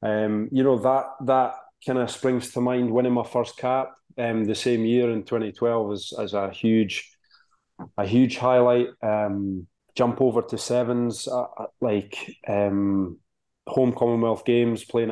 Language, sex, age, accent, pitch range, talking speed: English, male, 20-39, British, 105-120 Hz, 155 wpm